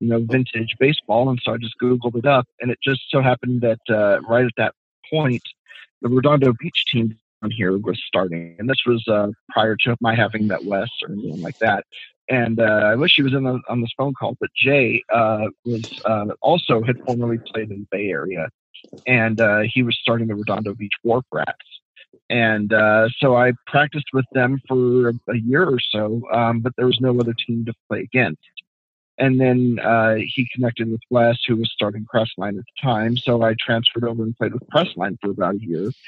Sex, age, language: male, 40-59, English